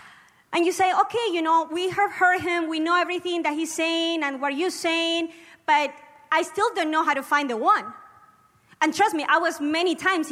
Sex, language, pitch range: female, English, 290-355 Hz